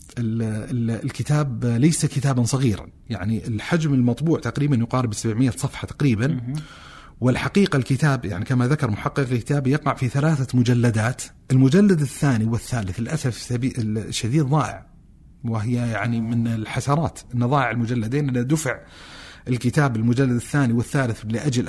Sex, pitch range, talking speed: male, 115-145 Hz, 115 wpm